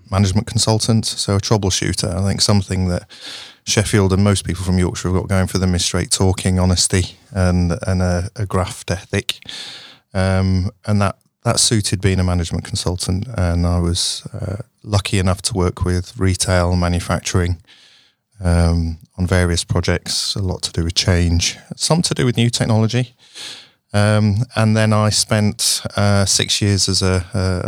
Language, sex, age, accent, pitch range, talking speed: English, male, 30-49, British, 90-105 Hz, 165 wpm